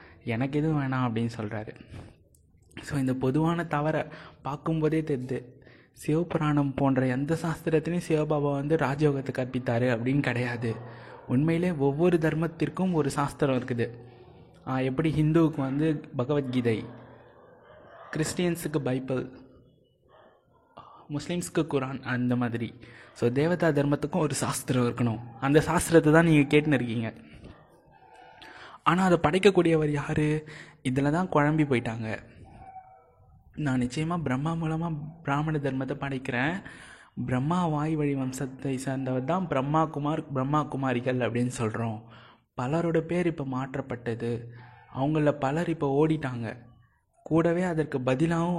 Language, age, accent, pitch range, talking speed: Tamil, 20-39, native, 125-155 Hz, 105 wpm